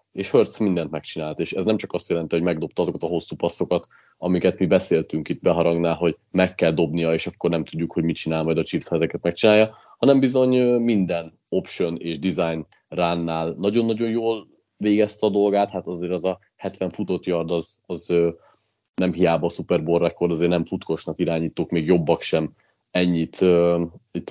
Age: 30-49